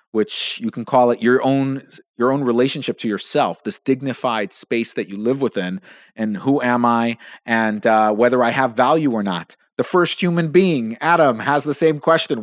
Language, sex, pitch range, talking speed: English, male, 115-140 Hz, 195 wpm